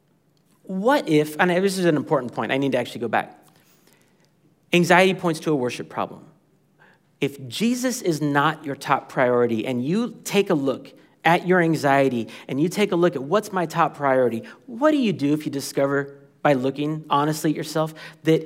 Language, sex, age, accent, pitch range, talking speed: English, male, 40-59, American, 140-195 Hz, 190 wpm